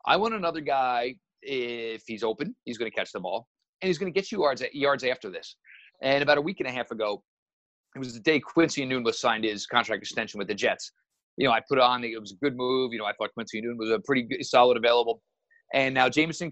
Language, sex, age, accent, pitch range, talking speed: English, male, 40-59, American, 125-155 Hz, 250 wpm